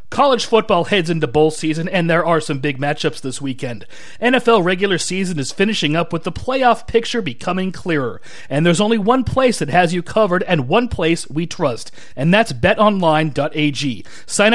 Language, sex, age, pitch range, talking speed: English, male, 40-59, 155-210 Hz, 180 wpm